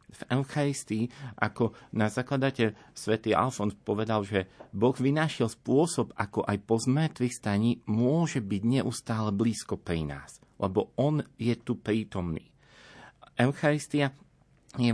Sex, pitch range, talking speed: male, 105-125 Hz, 120 wpm